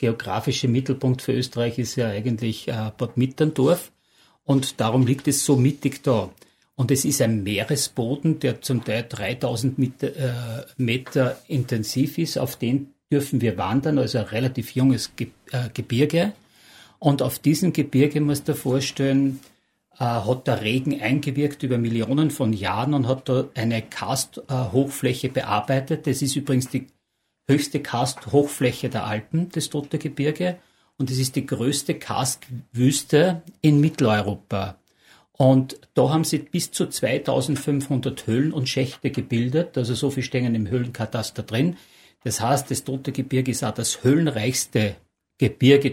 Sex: male